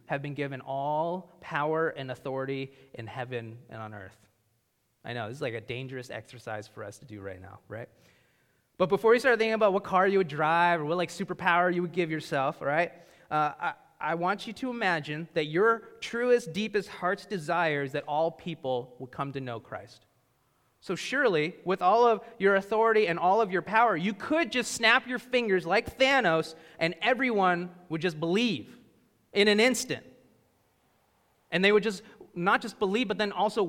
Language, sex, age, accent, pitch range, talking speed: English, male, 30-49, American, 150-210 Hz, 190 wpm